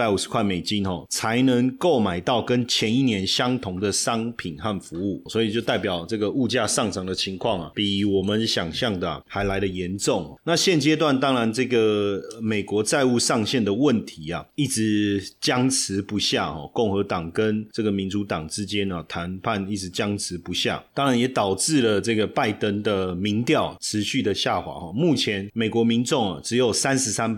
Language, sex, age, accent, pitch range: Chinese, male, 30-49, native, 100-120 Hz